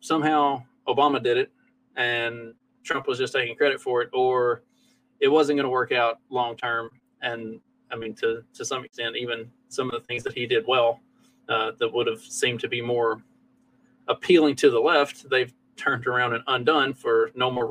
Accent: American